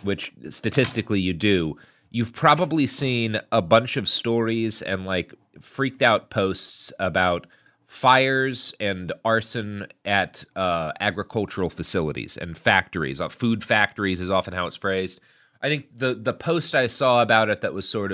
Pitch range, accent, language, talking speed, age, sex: 90-115 Hz, American, English, 150 wpm, 30-49, male